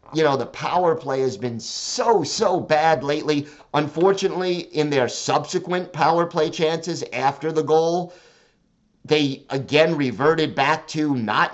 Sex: male